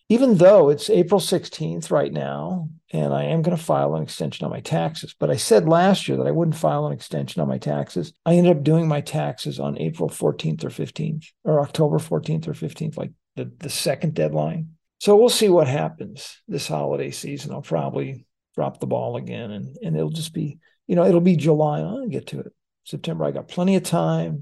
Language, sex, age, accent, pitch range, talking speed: English, male, 50-69, American, 145-180 Hz, 215 wpm